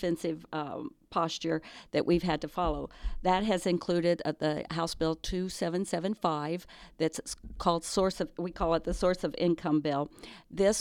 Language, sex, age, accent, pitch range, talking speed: English, female, 50-69, American, 160-185 Hz, 155 wpm